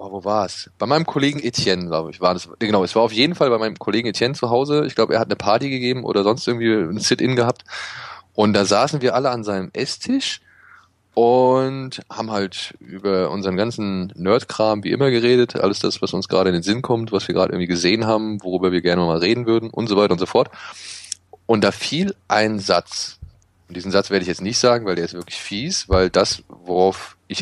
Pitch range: 95-120 Hz